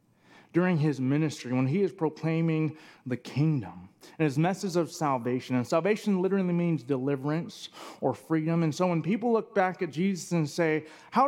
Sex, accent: male, American